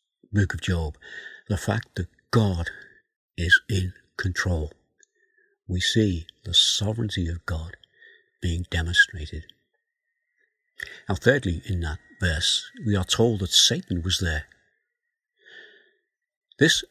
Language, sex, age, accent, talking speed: English, male, 60-79, British, 110 wpm